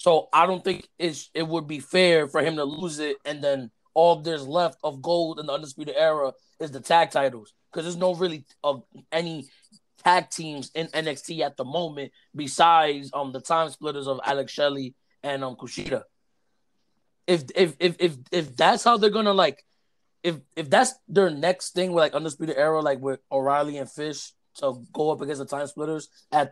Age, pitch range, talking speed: 20-39, 140-175 Hz, 195 wpm